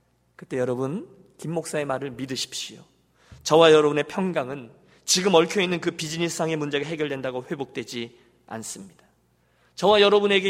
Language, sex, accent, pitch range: Korean, male, native, 150-230 Hz